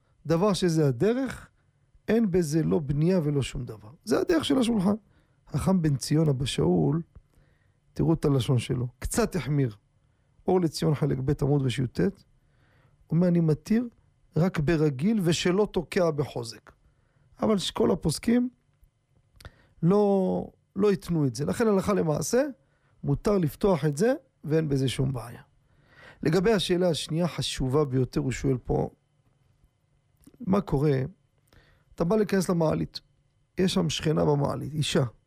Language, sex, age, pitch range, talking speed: Hebrew, male, 40-59, 135-180 Hz, 130 wpm